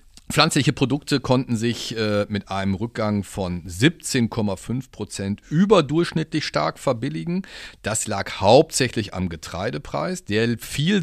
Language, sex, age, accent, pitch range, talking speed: German, male, 40-59, German, 95-135 Hz, 115 wpm